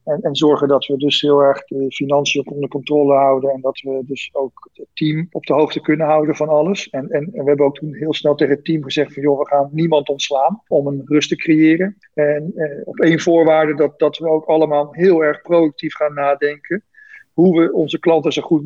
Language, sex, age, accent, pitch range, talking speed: Dutch, male, 50-69, Dutch, 145-170 Hz, 230 wpm